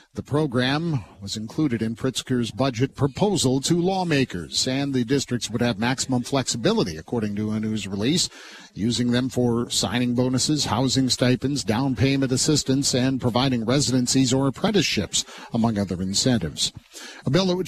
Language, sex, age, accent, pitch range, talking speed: English, male, 50-69, American, 120-150 Hz, 150 wpm